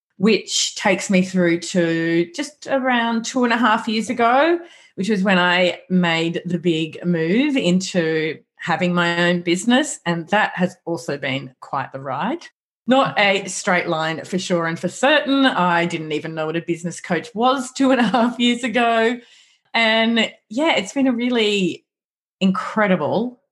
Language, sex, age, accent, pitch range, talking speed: English, female, 30-49, Australian, 170-230 Hz, 165 wpm